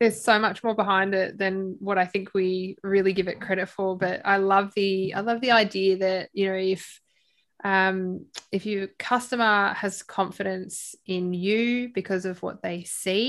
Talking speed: 185 wpm